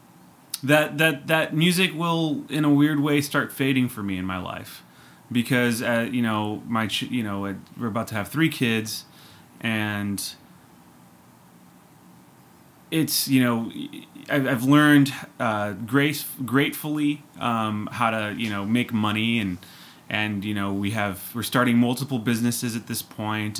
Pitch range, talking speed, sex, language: 105-145 Hz, 145 wpm, male, English